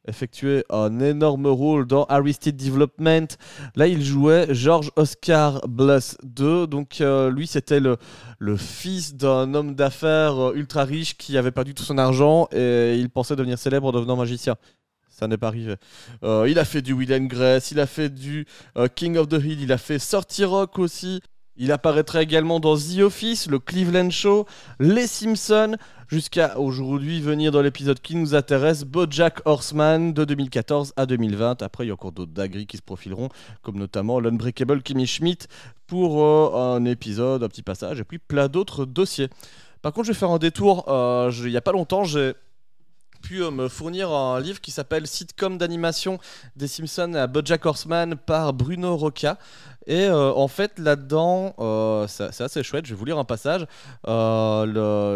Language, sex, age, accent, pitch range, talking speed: French, male, 20-39, French, 125-160 Hz, 180 wpm